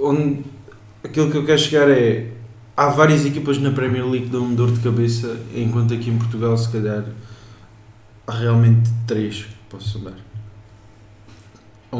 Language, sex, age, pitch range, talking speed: Portuguese, male, 20-39, 115-135 Hz, 150 wpm